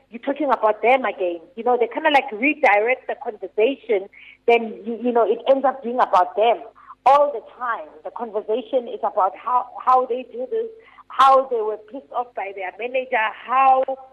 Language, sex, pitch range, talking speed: English, female, 215-265 Hz, 190 wpm